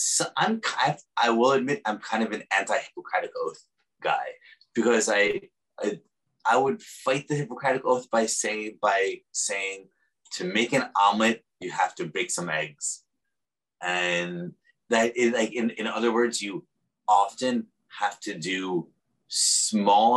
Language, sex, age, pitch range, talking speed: English, male, 30-49, 100-130 Hz, 150 wpm